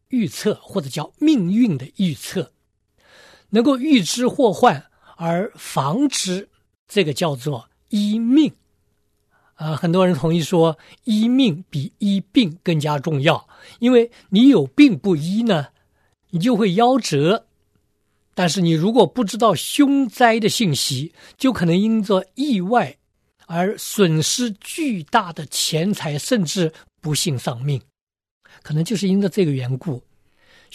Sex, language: male, Chinese